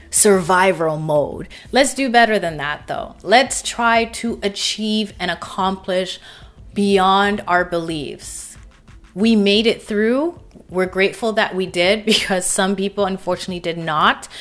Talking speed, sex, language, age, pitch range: 135 wpm, female, English, 30-49, 180-225 Hz